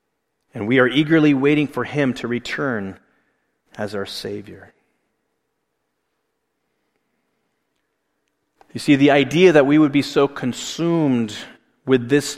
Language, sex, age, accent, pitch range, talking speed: English, male, 30-49, American, 115-145 Hz, 115 wpm